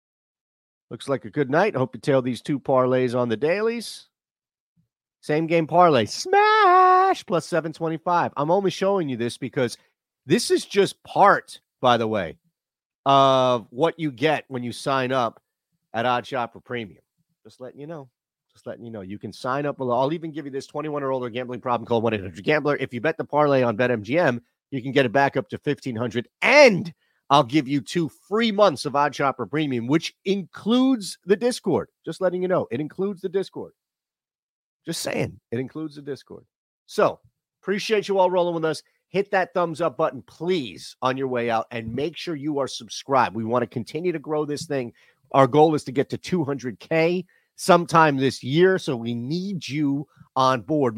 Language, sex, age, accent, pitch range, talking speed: English, male, 40-59, American, 125-170 Hz, 190 wpm